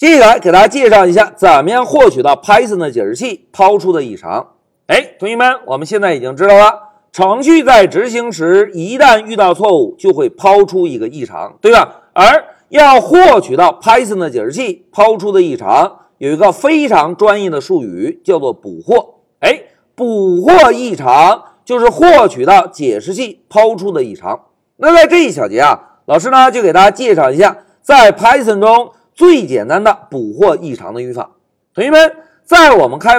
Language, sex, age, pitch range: Chinese, male, 50-69, 205-340 Hz